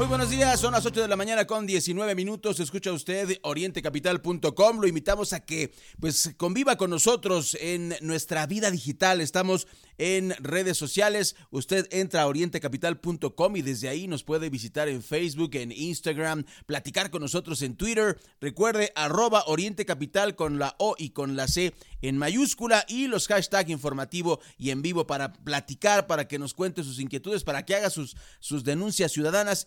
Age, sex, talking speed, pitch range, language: 40-59, male, 170 wpm, 145-195 Hz, Spanish